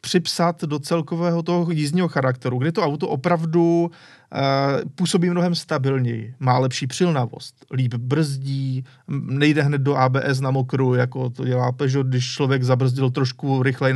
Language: Czech